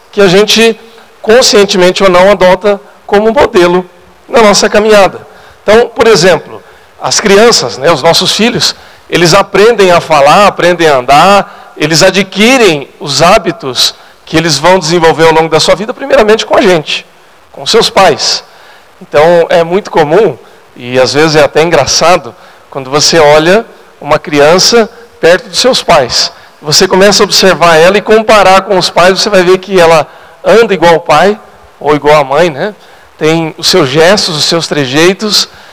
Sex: male